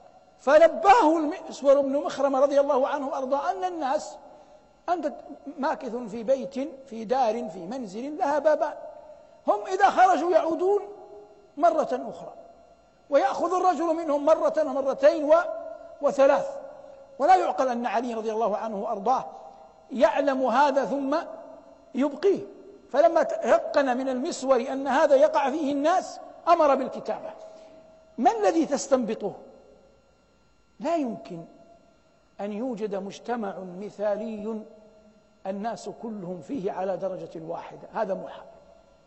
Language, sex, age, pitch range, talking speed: Arabic, male, 60-79, 210-300 Hz, 110 wpm